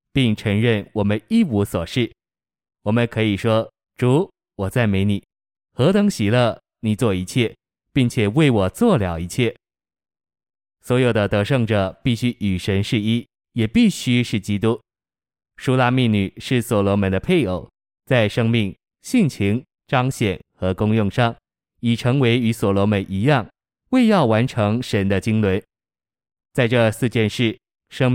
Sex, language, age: male, Chinese, 20-39